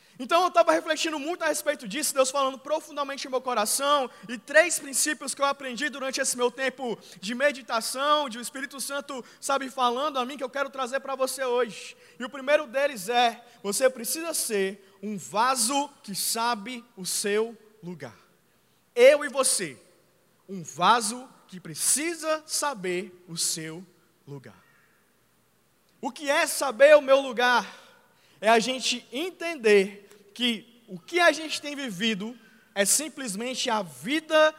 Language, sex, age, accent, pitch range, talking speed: Portuguese, male, 20-39, Brazilian, 215-280 Hz, 155 wpm